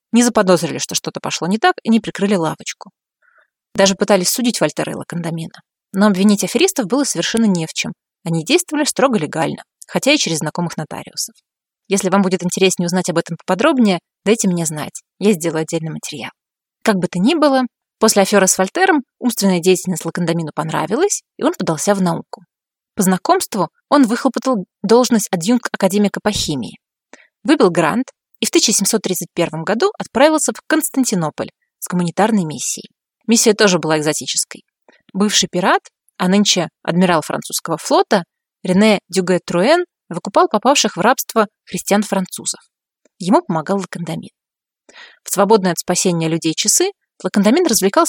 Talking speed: 145 wpm